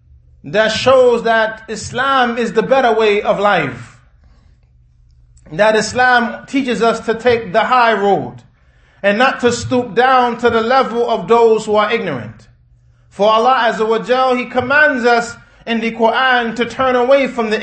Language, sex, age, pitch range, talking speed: English, male, 30-49, 175-245 Hz, 155 wpm